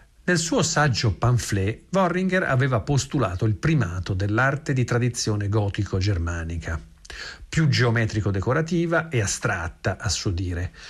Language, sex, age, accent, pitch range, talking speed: Italian, male, 50-69, native, 95-145 Hz, 110 wpm